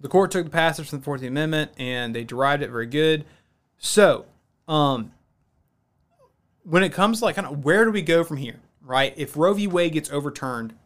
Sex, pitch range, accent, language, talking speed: male, 130-160 Hz, American, English, 205 wpm